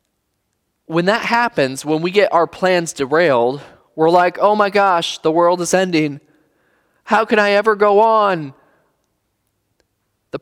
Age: 20-39